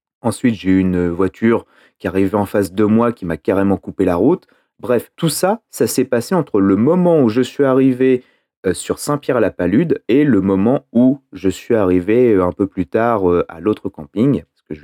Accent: French